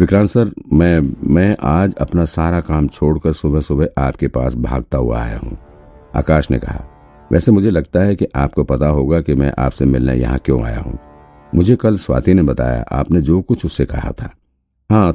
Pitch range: 70-90 Hz